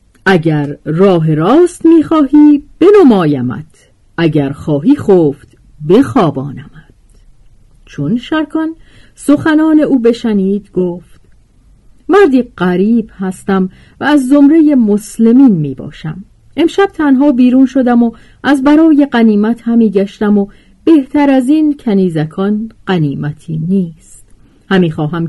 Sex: female